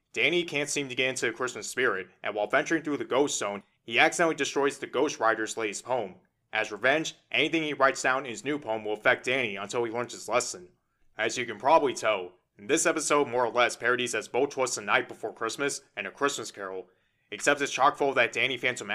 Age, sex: 20-39, male